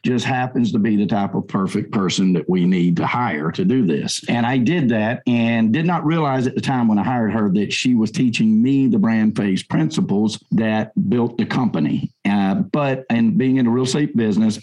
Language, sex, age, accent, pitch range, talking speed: English, male, 50-69, American, 100-135 Hz, 220 wpm